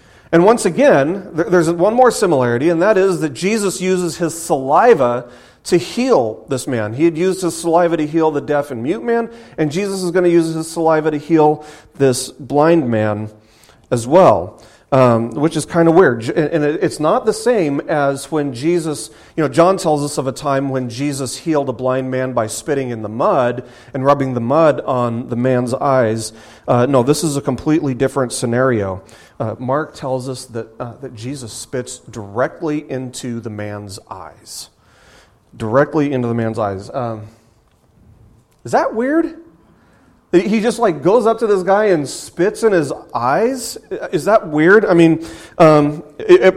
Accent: American